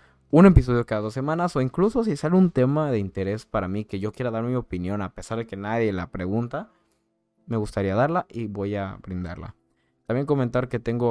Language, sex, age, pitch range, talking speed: Spanish, male, 20-39, 90-115 Hz, 210 wpm